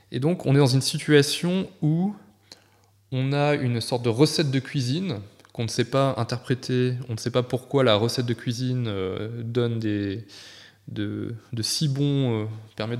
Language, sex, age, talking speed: French, male, 20-39, 175 wpm